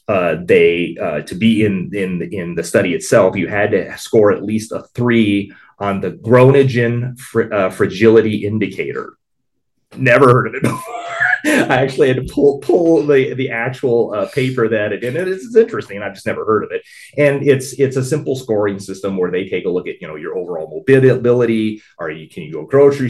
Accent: American